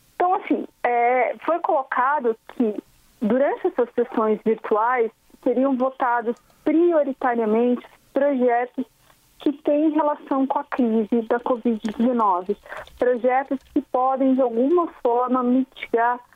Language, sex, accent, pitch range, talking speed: Portuguese, female, Brazilian, 230-265 Hz, 105 wpm